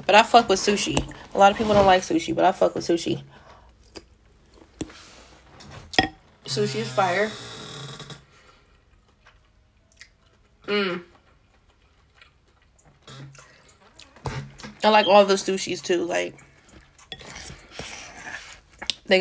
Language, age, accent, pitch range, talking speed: English, 20-39, American, 150-210 Hz, 90 wpm